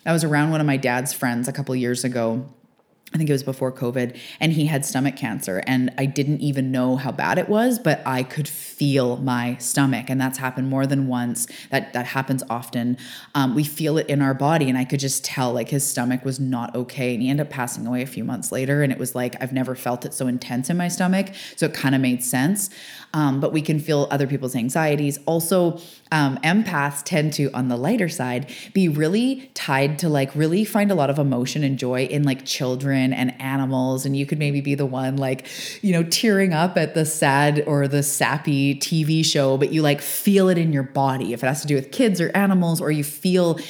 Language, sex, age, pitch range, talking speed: English, female, 20-39, 130-155 Hz, 235 wpm